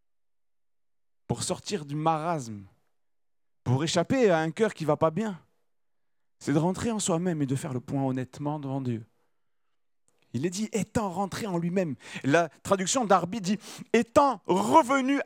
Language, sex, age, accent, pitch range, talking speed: French, male, 40-59, French, 190-265 Hz, 170 wpm